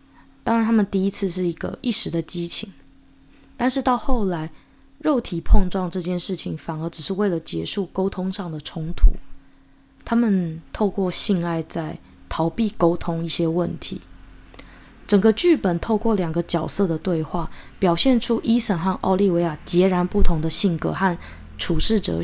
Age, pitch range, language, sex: 20-39, 165-200 Hz, Chinese, female